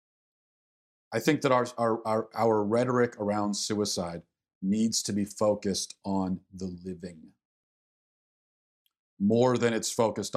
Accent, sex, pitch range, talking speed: American, male, 105-125 Hz, 120 wpm